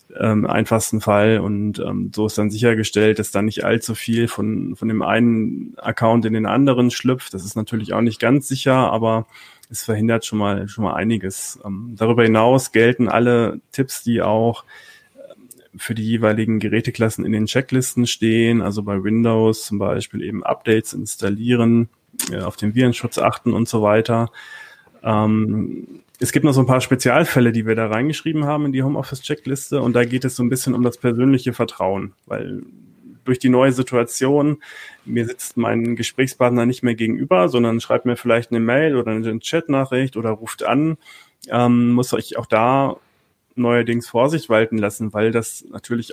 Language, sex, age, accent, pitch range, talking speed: German, male, 30-49, German, 110-130 Hz, 175 wpm